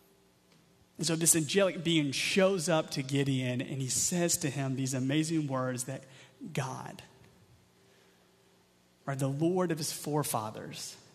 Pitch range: 135-175 Hz